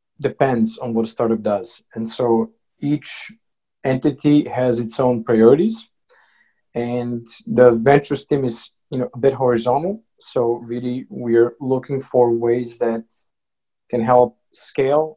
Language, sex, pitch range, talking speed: English, male, 115-125 Hz, 135 wpm